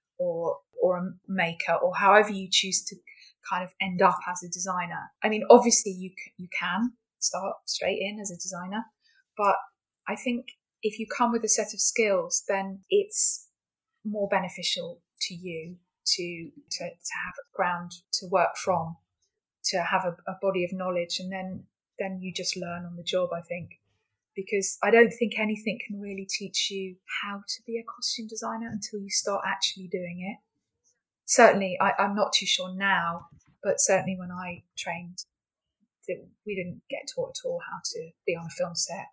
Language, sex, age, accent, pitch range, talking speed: English, female, 20-39, British, 180-225 Hz, 180 wpm